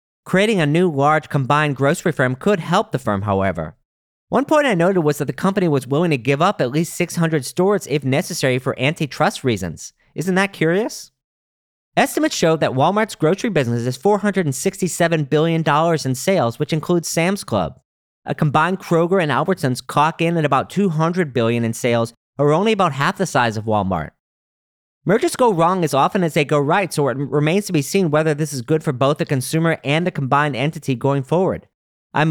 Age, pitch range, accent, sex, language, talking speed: 40-59, 130-180 Hz, American, male, English, 190 wpm